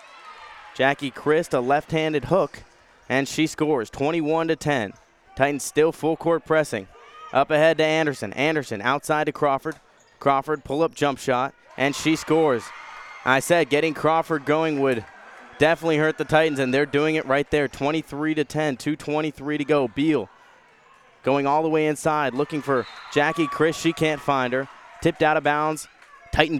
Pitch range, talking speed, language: 130-155 Hz, 165 wpm, English